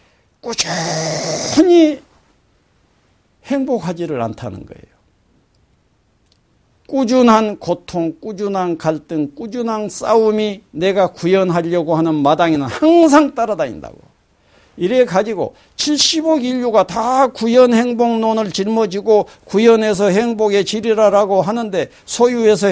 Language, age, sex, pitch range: Korean, 50-69, male, 160-230 Hz